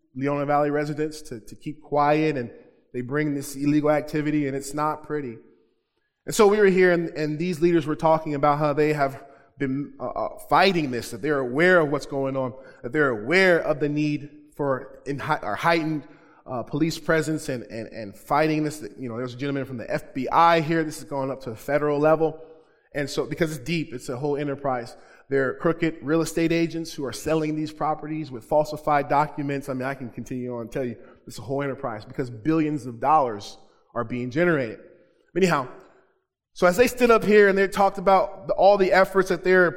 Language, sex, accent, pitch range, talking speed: English, male, American, 135-165 Hz, 205 wpm